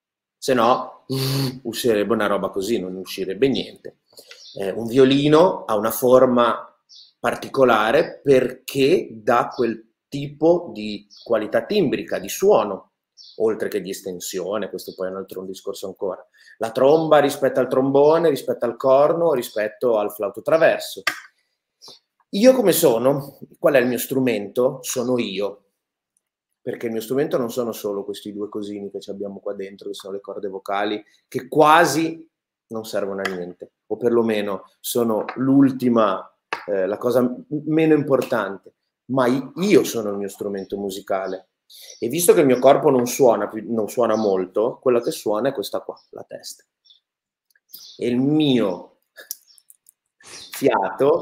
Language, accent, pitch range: Italian, native, 105-135 Hz